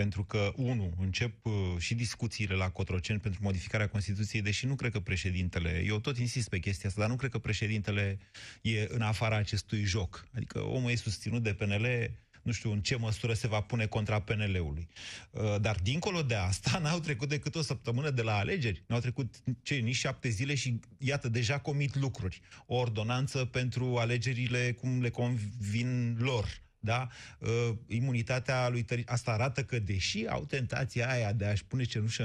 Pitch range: 105-140 Hz